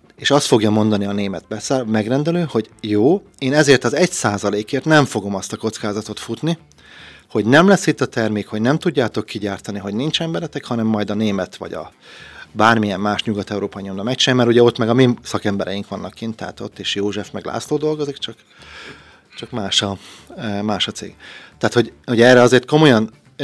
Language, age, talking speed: Hungarian, 30-49, 185 wpm